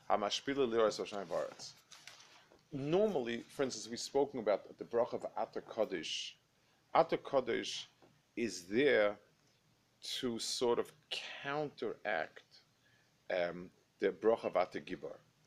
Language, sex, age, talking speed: English, male, 50-69, 95 wpm